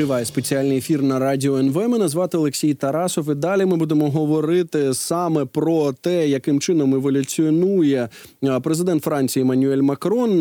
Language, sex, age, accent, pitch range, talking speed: Ukrainian, male, 20-39, native, 135-160 Hz, 145 wpm